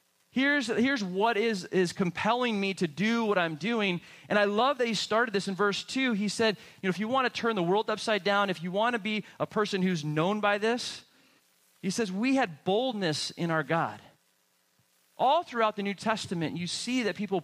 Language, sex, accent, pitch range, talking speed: English, male, American, 160-215 Hz, 215 wpm